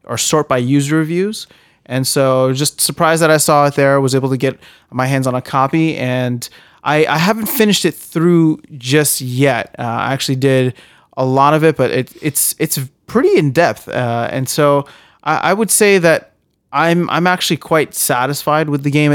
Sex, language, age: male, English, 30-49